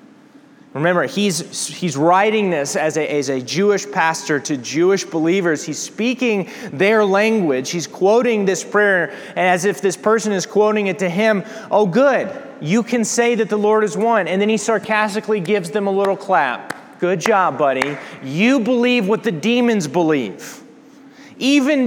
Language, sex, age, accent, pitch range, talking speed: English, male, 30-49, American, 195-250 Hz, 160 wpm